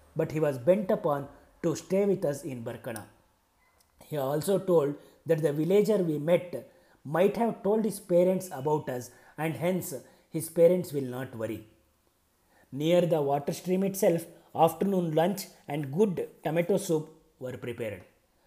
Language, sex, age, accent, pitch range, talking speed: Kannada, male, 30-49, native, 140-180 Hz, 150 wpm